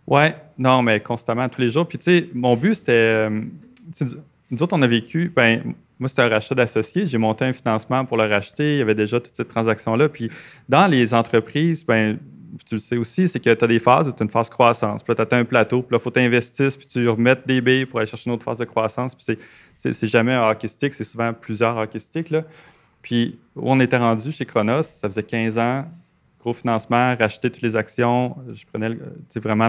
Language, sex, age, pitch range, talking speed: French, male, 30-49, 110-140 Hz, 230 wpm